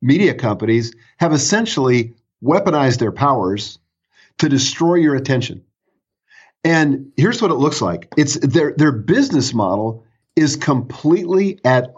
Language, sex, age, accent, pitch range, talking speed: English, male, 50-69, American, 115-140 Hz, 125 wpm